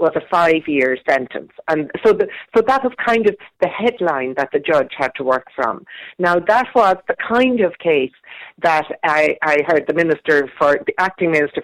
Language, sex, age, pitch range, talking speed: English, female, 50-69, 150-210 Hz, 180 wpm